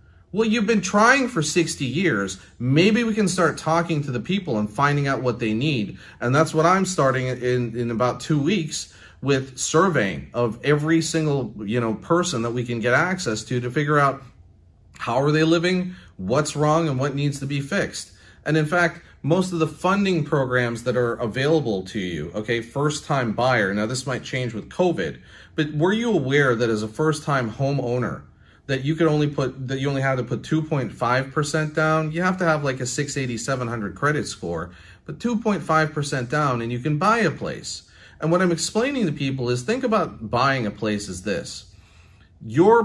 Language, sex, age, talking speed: English, male, 30-49, 195 wpm